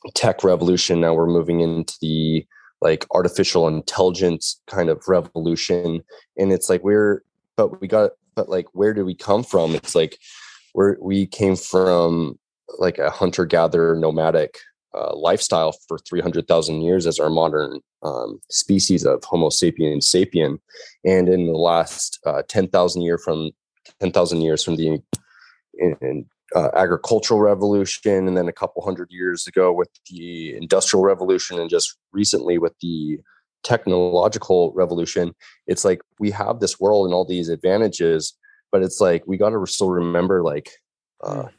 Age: 20-39